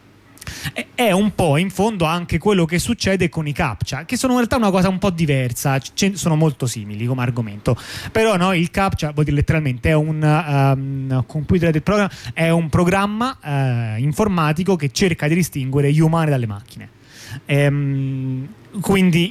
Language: Italian